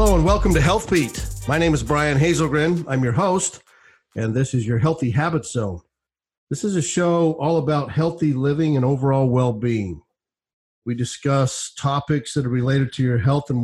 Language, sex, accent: English, male, American